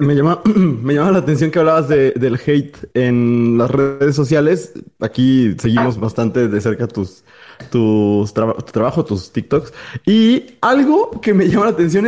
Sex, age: male, 20-39